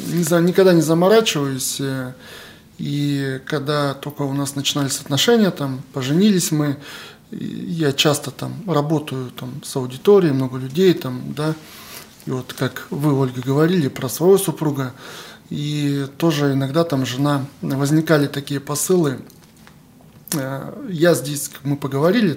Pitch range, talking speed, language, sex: 140-180 Hz, 120 wpm, Russian, male